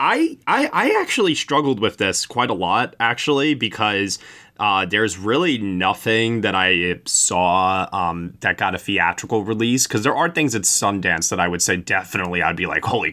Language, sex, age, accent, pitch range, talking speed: English, male, 20-39, American, 95-125 Hz, 185 wpm